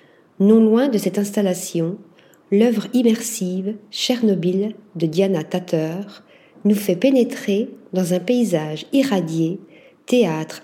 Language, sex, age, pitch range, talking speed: French, female, 50-69, 180-230 Hz, 115 wpm